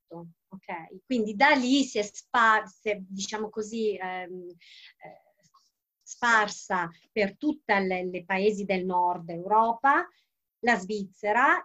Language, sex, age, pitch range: Italian, female, 30-49, 185-230 Hz